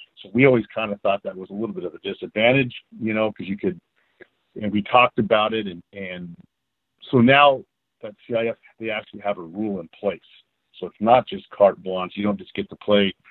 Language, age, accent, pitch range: English, 50-69, American, 95-110 Hz